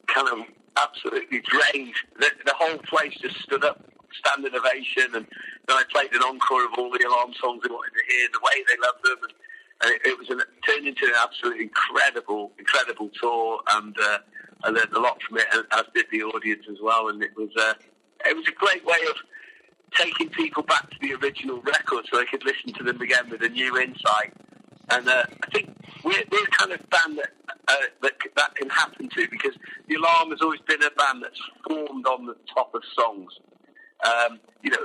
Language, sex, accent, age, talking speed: English, male, British, 50-69, 205 wpm